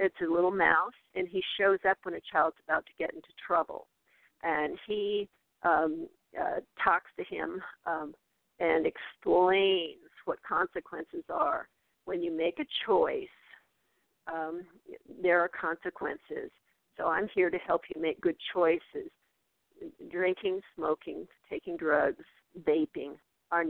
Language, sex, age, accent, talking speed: English, female, 50-69, American, 135 wpm